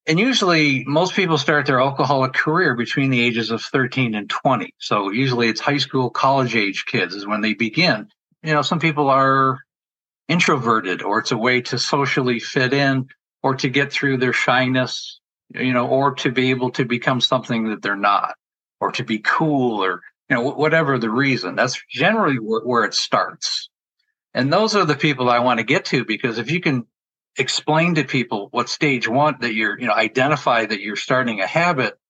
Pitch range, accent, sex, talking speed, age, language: 120-140 Hz, American, male, 195 wpm, 50-69, English